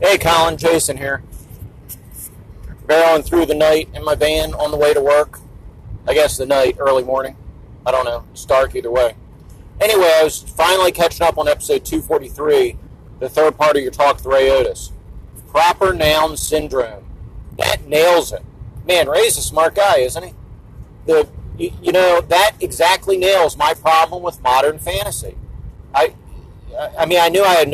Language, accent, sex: English, American, male